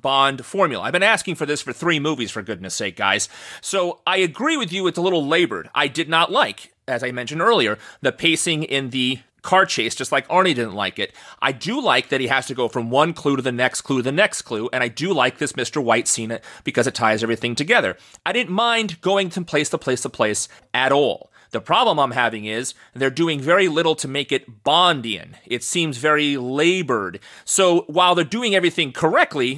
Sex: male